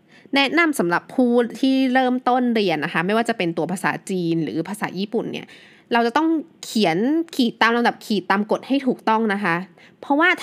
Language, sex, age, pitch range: Thai, female, 20-39, 180-250 Hz